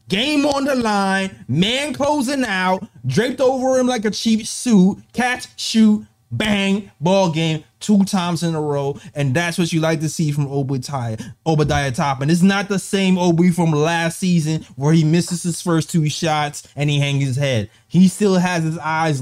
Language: English